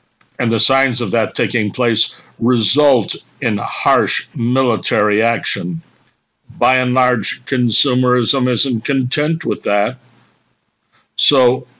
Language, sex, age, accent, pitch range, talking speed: English, male, 60-79, American, 110-135 Hz, 105 wpm